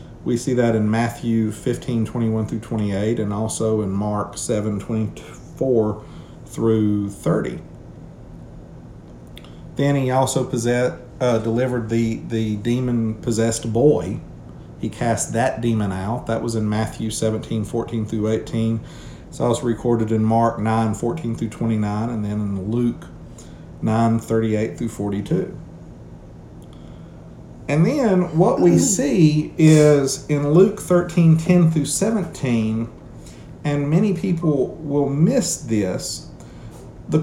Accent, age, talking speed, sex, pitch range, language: American, 50-69, 120 wpm, male, 110-155 Hz, English